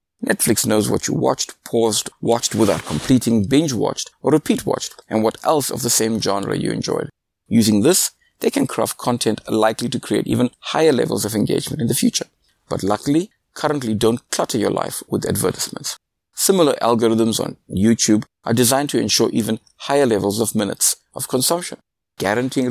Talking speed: 165 wpm